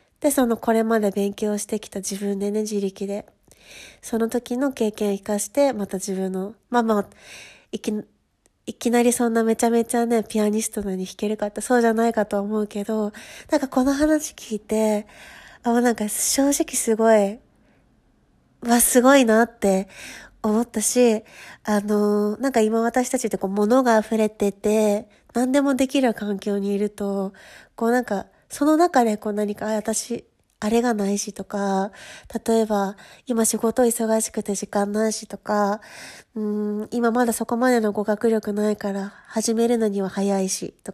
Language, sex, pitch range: Japanese, female, 205-235 Hz